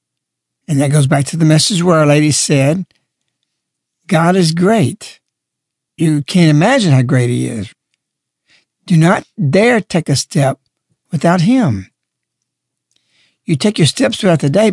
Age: 60-79